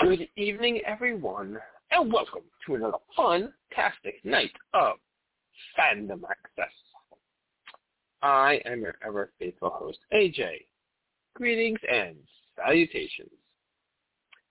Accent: American